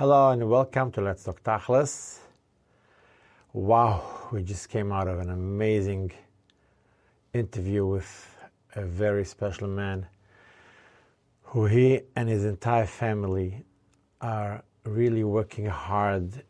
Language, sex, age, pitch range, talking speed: English, male, 50-69, 100-110 Hz, 115 wpm